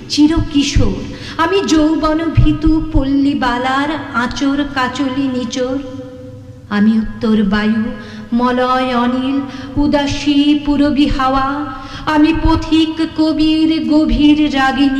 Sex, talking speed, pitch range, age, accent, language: female, 45 wpm, 260-320 Hz, 50-69, native, Bengali